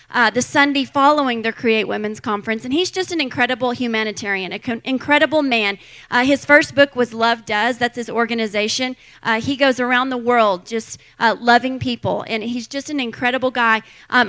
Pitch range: 225-275 Hz